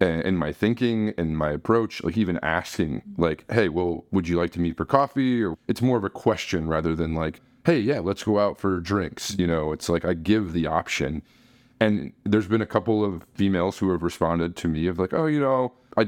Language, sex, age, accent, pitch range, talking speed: English, male, 30-49, American, 85-115 Hz, 230 wpm